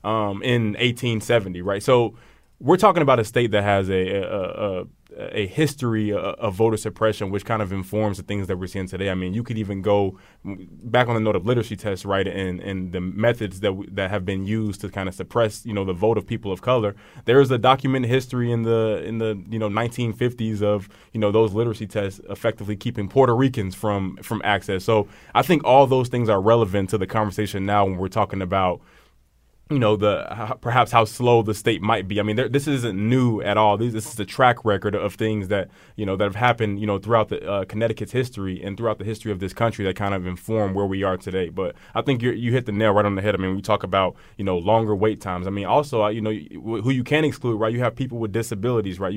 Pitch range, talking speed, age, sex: 100-115 Hz, 250 wpm, 20-39, male